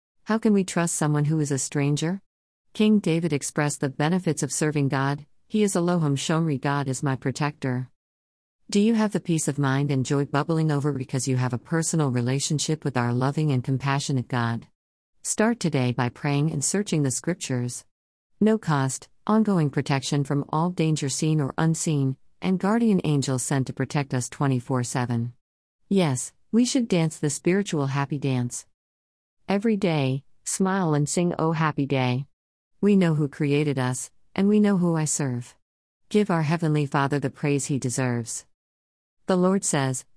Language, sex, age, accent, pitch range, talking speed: English, female, 50-69, American, 130-170 Hz, 170 wpm